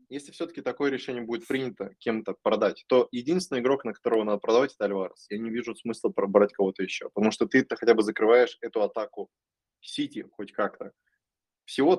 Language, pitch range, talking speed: Russian, 110-145 Hz, 180 wpm